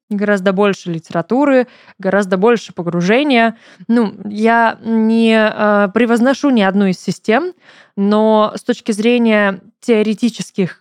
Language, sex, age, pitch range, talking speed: Russian, female, 20-39, 190-230 Hz, 110 wpm